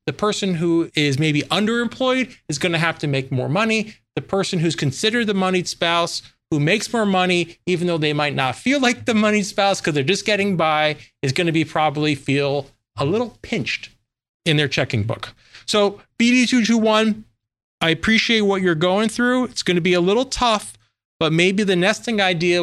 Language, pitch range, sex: English, 155-210 Hz, male